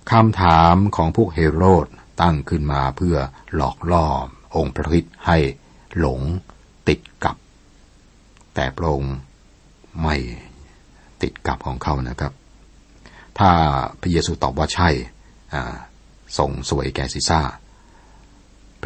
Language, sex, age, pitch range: Thai, male, 60-79, 70-85 Hz